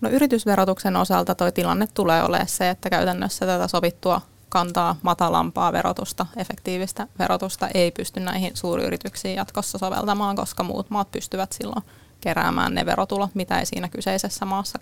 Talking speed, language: 145 wpm, Finnish